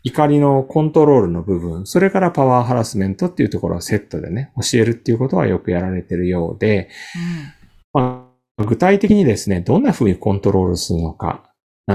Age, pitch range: 40-59, 95-145 Hz